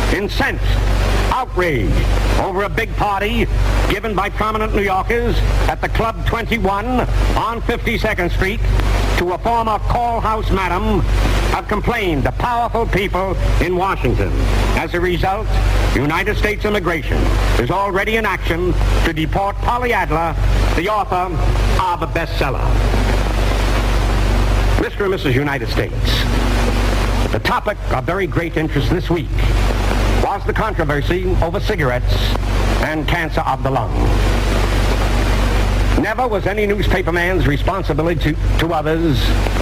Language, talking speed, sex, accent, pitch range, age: English, 125 wpm, male, American, 100-150 Hz, 60-79